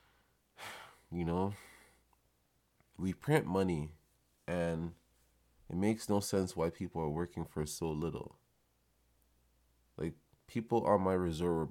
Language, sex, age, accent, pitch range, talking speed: English, male, 20-39, American, 70-95 Hz, 120 wpm